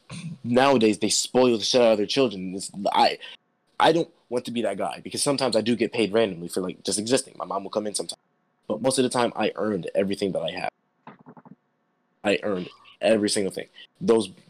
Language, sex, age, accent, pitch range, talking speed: English, male, 20-39, American, 95-130 Hz, 215 wpm